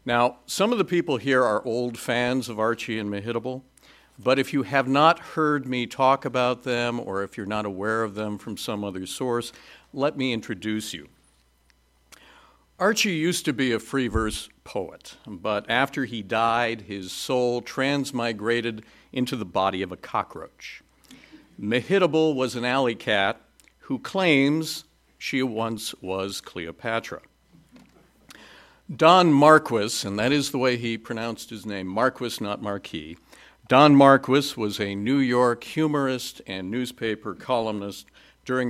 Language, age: English, 50-69